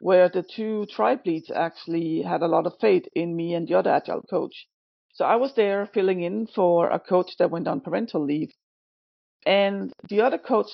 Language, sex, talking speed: English, female, 200 wpm